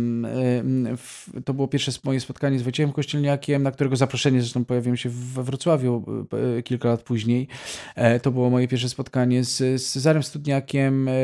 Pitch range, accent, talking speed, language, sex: 120-130 Hz, native, 145 wpm, Polish, male